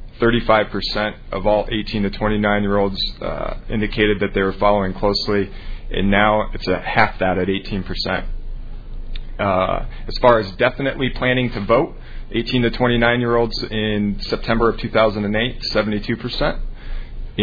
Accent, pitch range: American, 100-115 Hz